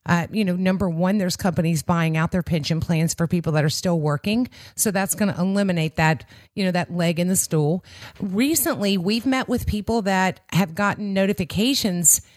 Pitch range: 170-210 Hz